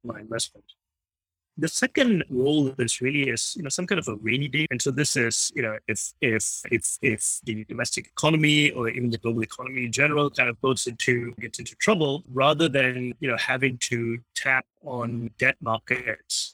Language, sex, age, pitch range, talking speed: English, male, 30-49, 115-140 Hz, 195 wpm